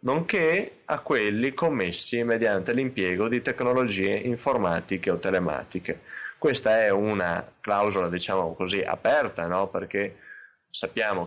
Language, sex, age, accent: Italian, male, 20-39, native